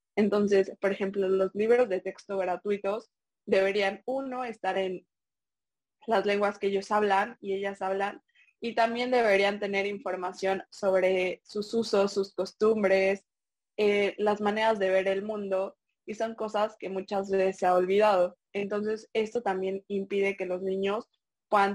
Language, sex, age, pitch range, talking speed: Spanish, female, 20-39, 190-220 Hz, 150 wpm